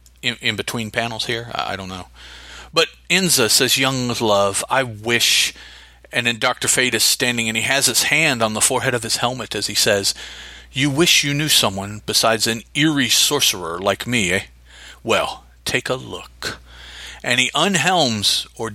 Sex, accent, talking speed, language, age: male, American, 175 wpm, English, 40-59